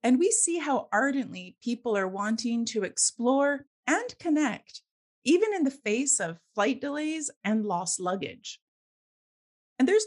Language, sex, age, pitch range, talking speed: English, female, 30-49, 210-285 Hz, 145 wpm